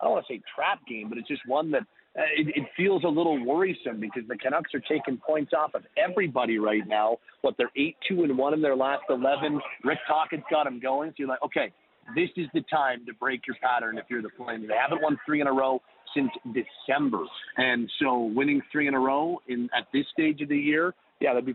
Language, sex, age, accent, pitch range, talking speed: English, male, 40-59, American, 125-150 Hz, 240 wpm